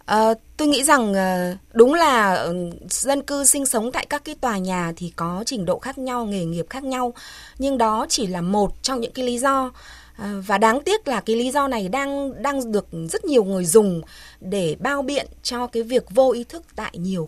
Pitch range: 190-265 Hz